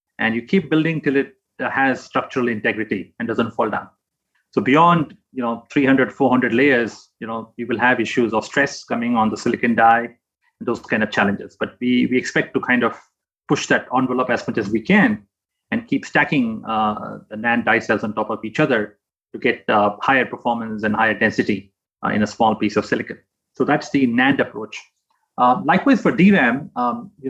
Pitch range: 110-135 Hz